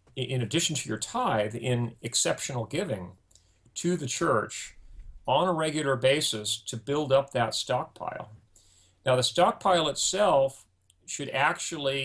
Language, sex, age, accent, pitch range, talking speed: English, male, 40-59, American, 105-135 Hz, 130 wpm